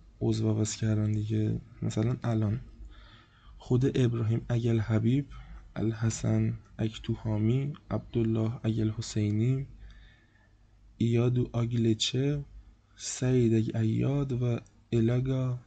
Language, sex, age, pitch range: Persian, male, 20-39, 110-120 Hz